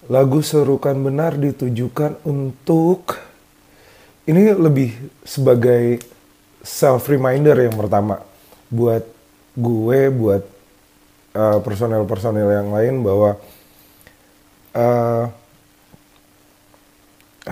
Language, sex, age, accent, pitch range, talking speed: Indonesian, male, 30-49, native, 105-125 Hz, 70 wpm